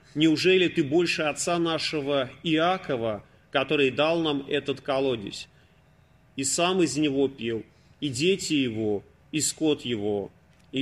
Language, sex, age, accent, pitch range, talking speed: Russian, male, 30-49, native, 130-165 Hz, 130 wpm